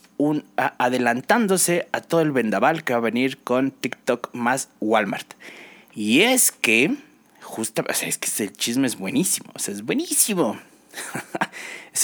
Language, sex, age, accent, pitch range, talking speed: Spanish, male, 30-49, Mexican, 120-190 Hz, 160 wpm